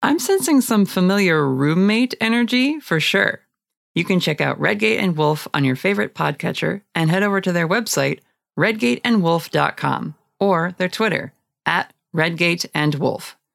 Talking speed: 135 wpm